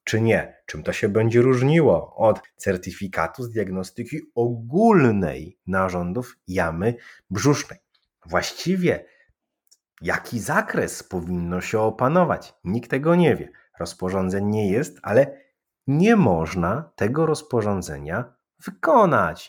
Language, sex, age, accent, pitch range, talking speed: Polish, male, 30-49, native, 95-155 Hz, 105 wpm